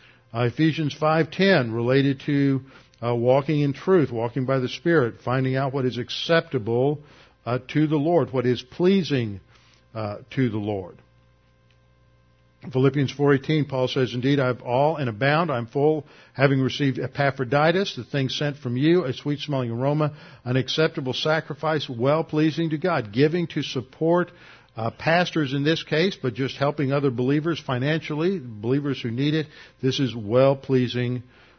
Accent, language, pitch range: American, English, 125-150 Hz